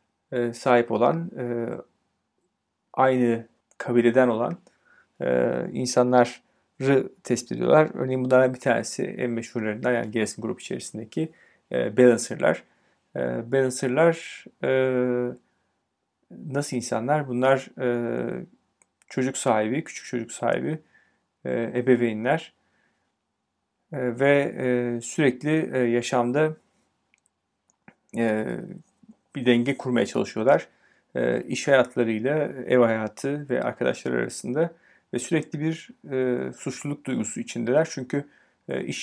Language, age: Turkish, 40-59